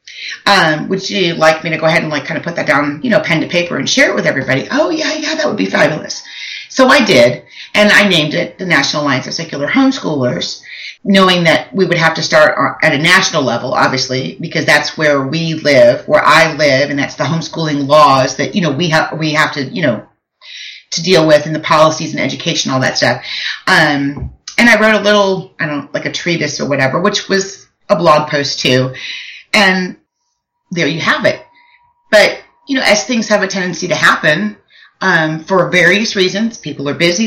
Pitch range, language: 145-205 Hz, English